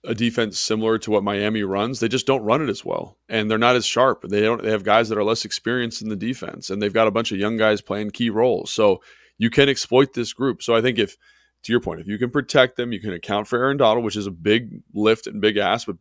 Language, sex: English, male